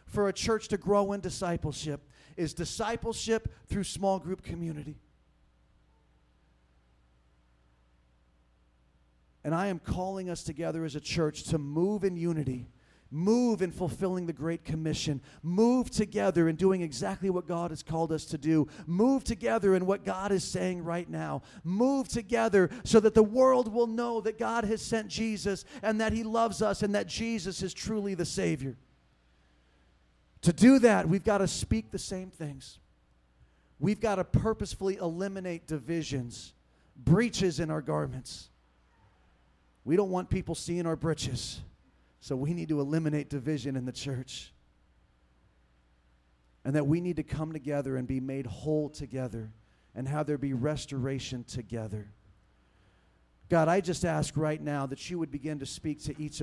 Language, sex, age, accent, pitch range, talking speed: English, male, 40-59, American, 115-190 Hz, 155 wpm